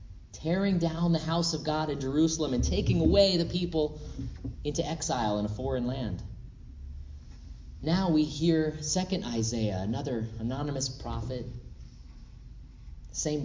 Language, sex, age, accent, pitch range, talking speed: English, male, 30-49, American, 110-160 Hz, 125 wpm